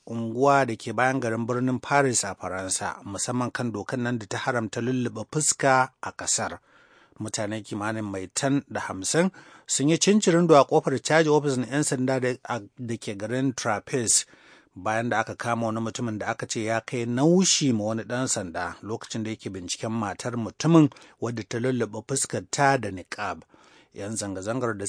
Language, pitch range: English, 110-135 Hz